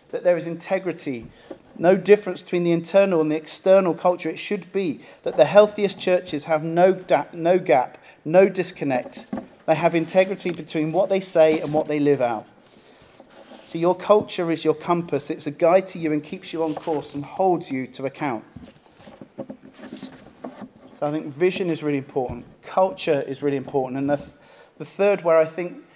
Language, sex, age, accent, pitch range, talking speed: English, male, 40-59, British, 155-185 Hz, 180 wpm